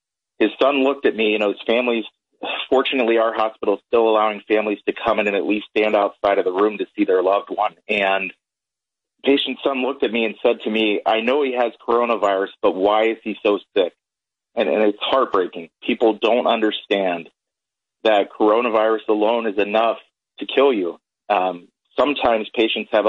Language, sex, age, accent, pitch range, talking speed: English, male, 30-49, American, 100-115 Hz, 185 wpm